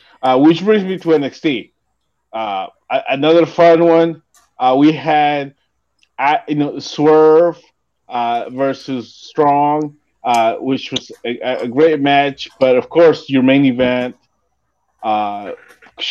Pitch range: 120-160 Hz